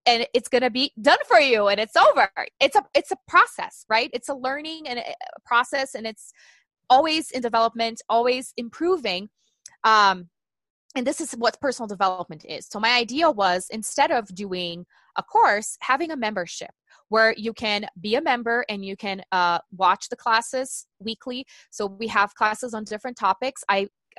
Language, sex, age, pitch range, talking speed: English, female, 20-39, 200-260 Hz, 180 wpm